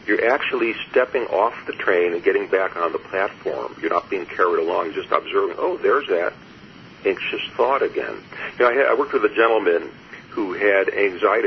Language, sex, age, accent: English, male, 50-69, American